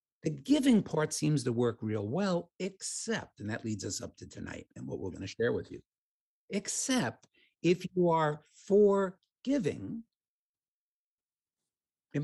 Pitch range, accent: 125-200 Hz, American